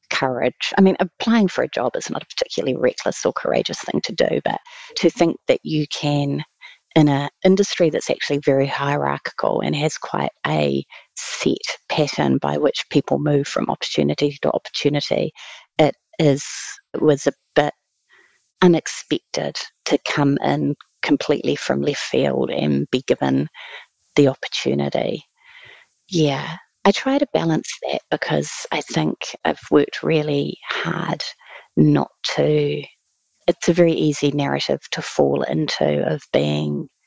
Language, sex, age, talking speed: English, female, 30-49, 140 wpm